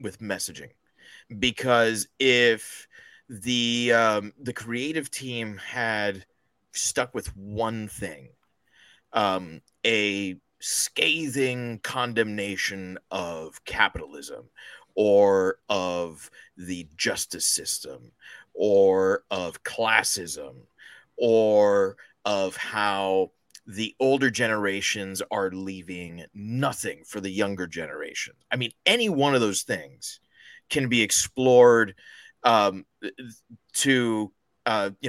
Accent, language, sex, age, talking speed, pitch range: American, English, male, 30-49, 95 wpm, 100-125 Hz